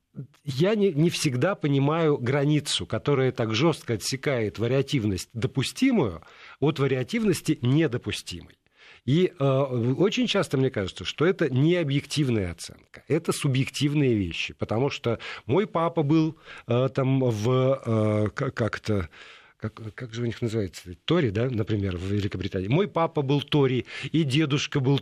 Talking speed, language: 130 wpm, Russian